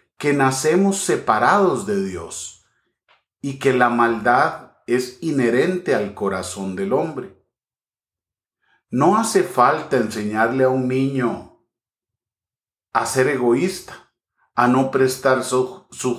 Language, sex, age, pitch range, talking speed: English, male, 40-59, 110-145 Hz, 110 wpm